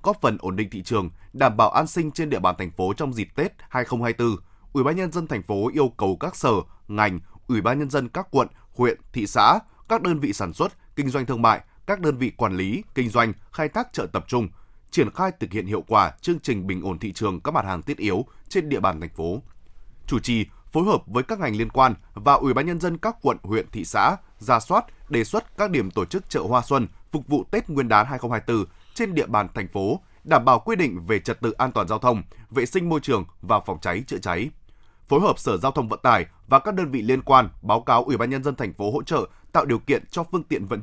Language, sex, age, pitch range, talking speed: Vietnamese, male, 20-39, 105-150 Hz, 255 wpm